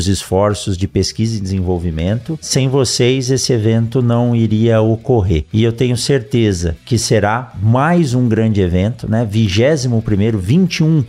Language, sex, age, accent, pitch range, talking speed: Portuguese, male, 50-69, Brazilian, 110-140 Hz, 135 wpm